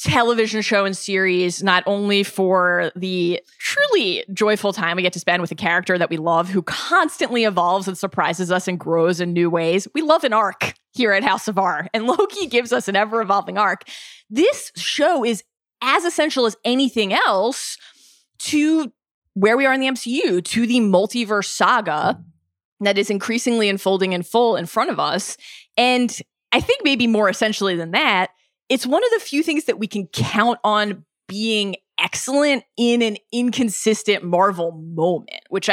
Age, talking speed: 20-39, 175 wpm